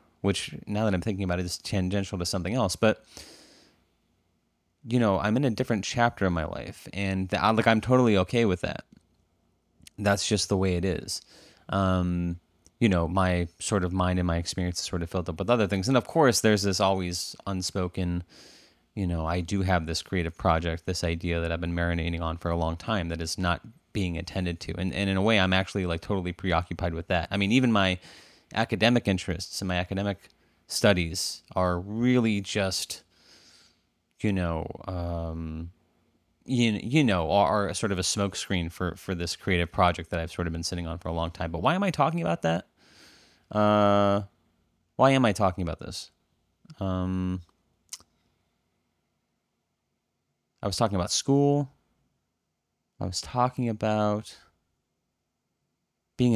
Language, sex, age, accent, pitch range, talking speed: English, male, 30-49, American, 85-105 Hz, 175 wpm